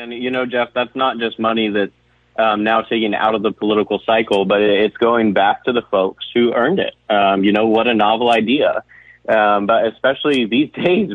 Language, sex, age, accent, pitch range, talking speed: English, male, 30-49, American, 105-115 Hz, 210 wpm